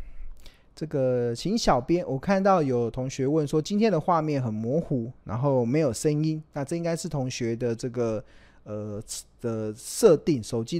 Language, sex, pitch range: Chinese, male, 110-150 Hz